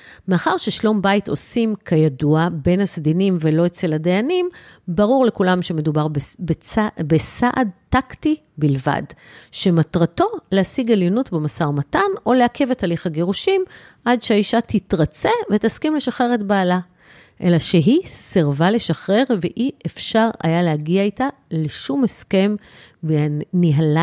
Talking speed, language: 115 wpm, Hebrew